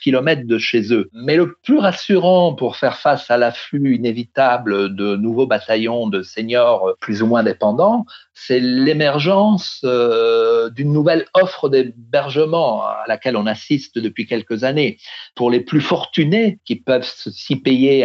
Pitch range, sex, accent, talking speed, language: 120-165 Hz, male, French, 145 wpm, French